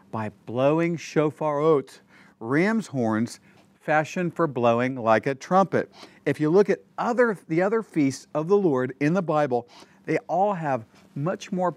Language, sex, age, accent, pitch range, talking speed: English, male, 50-69, American, 125-180 Hz, 155 wpm